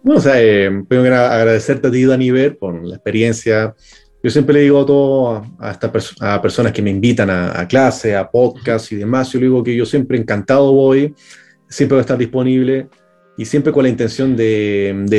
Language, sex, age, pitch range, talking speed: Spanish, male, 30-49, 110-130 Hz, 215 wpm